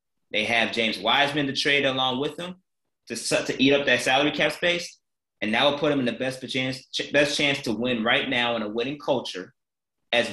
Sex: male